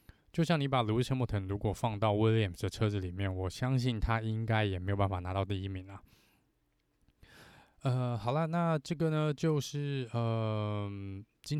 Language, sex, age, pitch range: Chinese, male, 20-39, 100-125 Hz